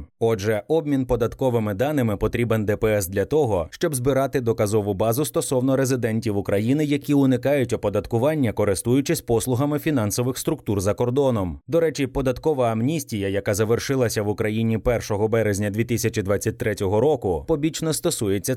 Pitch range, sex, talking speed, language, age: 110-140 Hz, male, 125 wpm, Ukrainian, 20-39